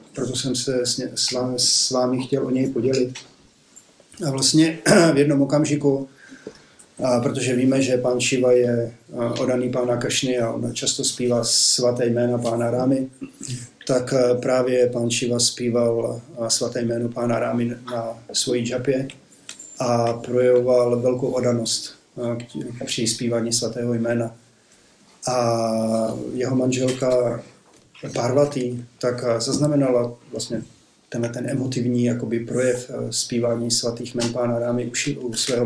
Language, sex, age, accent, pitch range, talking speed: Czech, male, 40-59, native, 120-130 Hz, 125 wpm